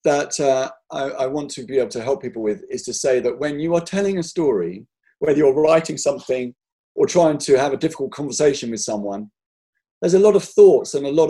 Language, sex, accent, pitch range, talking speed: English, male, British, 130-195 Hz, 230 wpm